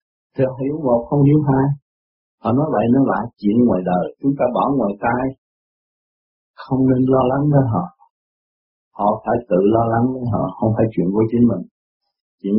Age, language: 50-69, Vietnamese